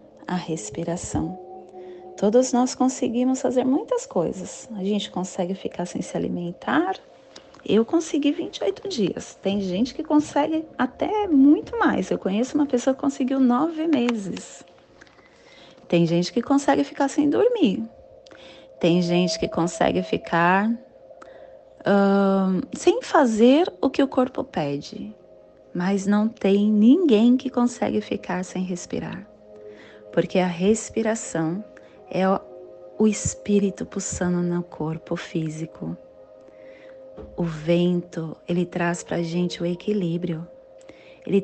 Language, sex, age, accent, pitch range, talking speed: Portuguese, female, 30-49, Brazilian, 170-250 Hz, 115 wpm